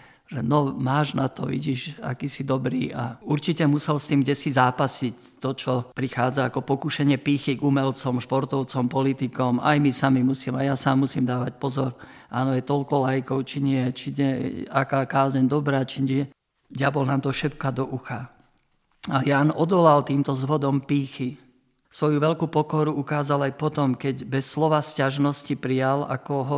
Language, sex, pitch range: Slovak, male, 130-145 Hz